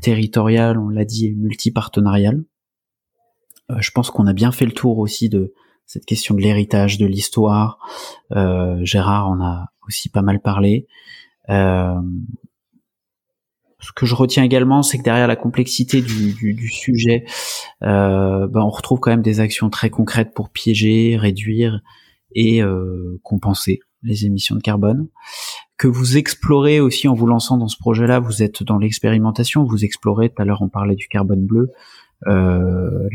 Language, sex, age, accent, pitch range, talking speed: French, male, 20-39, French, 100-120 Hz, 165 wpm